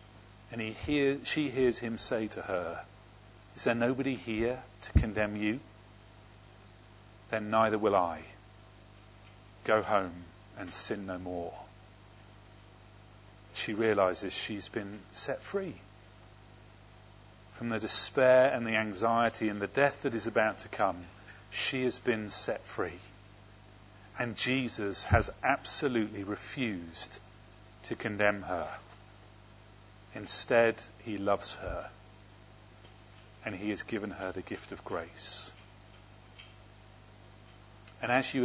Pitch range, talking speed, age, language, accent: 100-110 Hz, 115 wpm, 40-59, English, British